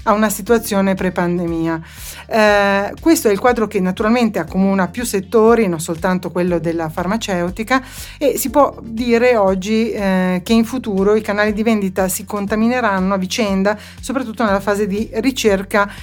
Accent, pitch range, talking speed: native, 185-230 Hz, 155 wpm